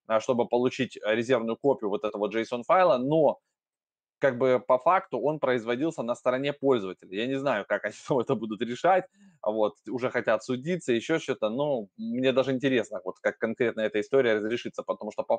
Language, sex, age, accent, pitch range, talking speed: Russian, male, 20-39, native, 110-135 Hz, 170 wpm